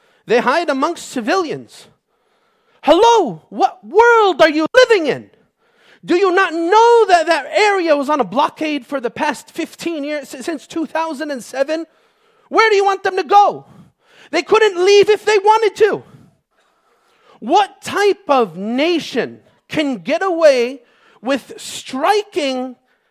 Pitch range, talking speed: 270-395 Hz, 135 wpm